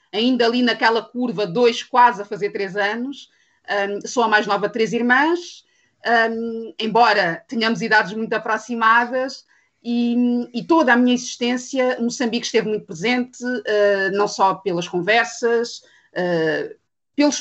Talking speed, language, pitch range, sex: 130 wpm, Portuguese, 200-245 Hz, female